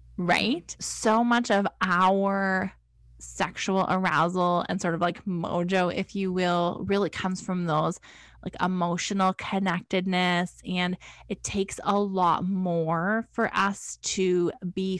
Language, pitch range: English, 180-210 Hz